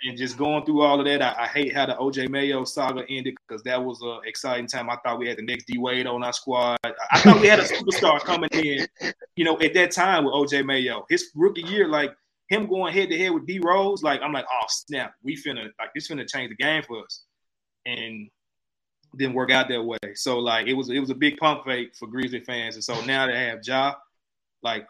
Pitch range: 115-140 Hz